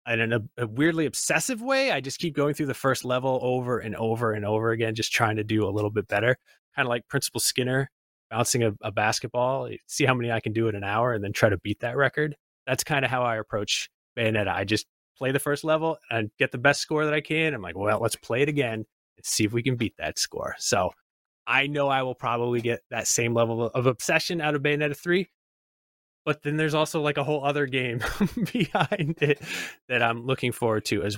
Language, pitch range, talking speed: English, 110-150 Hz, 235 wpm